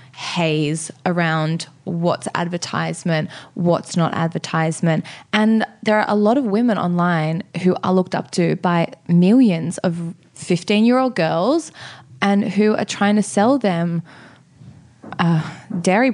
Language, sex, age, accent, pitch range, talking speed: English, female, 20-39, Australian, 165-210 Hz, 135 wpm